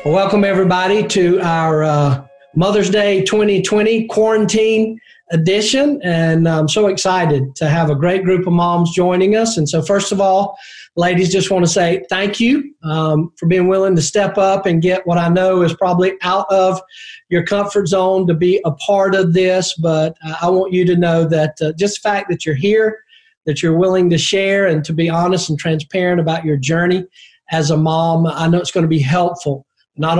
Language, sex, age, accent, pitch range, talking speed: English, male, 40-59, American, 160-190 Hz, 195 wpm